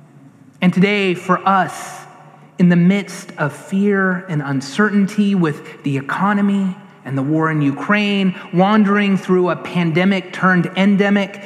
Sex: male